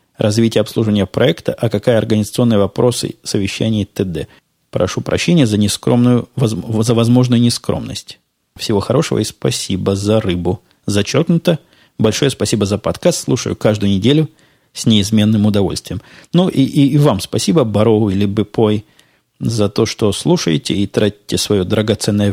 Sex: male